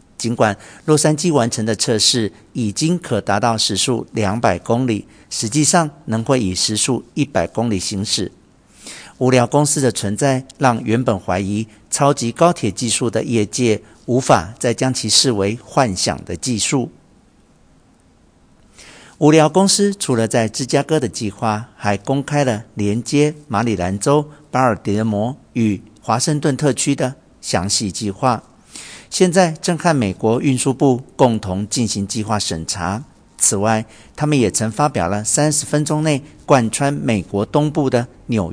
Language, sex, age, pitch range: Chinese, male, 50-69, 105-140 Hz